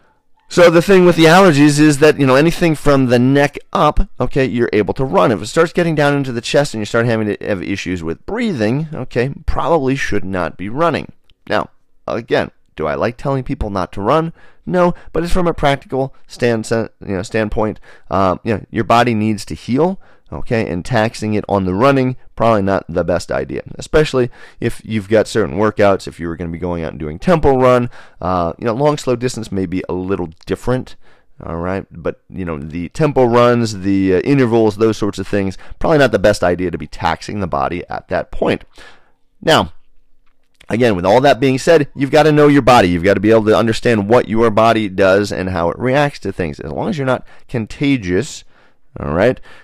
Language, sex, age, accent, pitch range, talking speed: English, male, 30-49, American, 95-135 Hz, 210 wpm